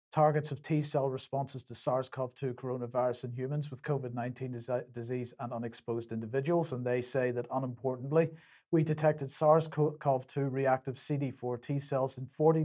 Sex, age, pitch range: male, 50-69, 125-150 Hz